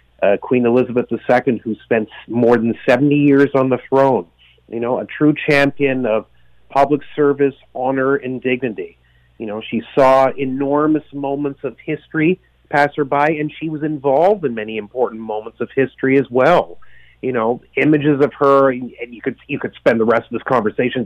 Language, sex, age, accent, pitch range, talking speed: English, male, 30-49, American, 120-140 Hz, 175 wpm